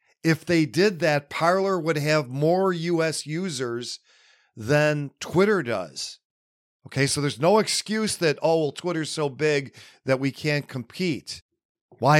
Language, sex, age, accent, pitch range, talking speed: English, male, 40-59, American, 120-165 Hz, 145 wpm